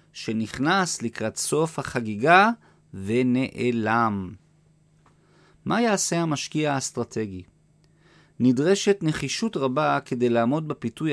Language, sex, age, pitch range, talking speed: Hebrew, male, 40-59, 115-150 Hz, 80 wpm